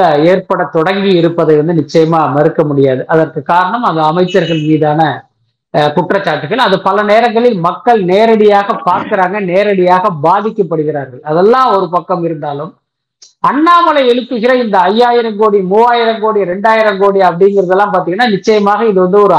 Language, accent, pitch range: Tamil, native, 185-240 Hz